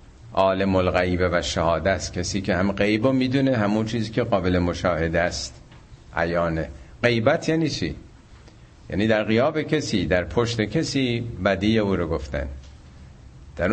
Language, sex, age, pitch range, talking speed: Persian, male, 50-69, 90-125 Hz, 140 wpm